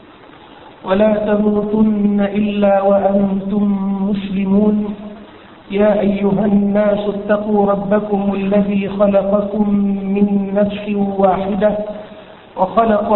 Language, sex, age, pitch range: Thai, male, 50-69, 200-215 Hz